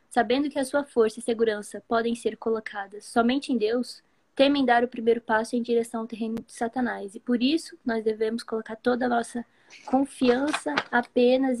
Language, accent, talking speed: Portuguese, Brazilian, 180 wpm